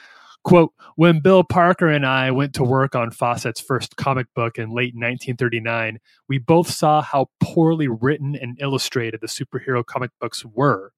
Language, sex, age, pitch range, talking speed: English, male, 30-49, 120-155 Hz, 165 wpm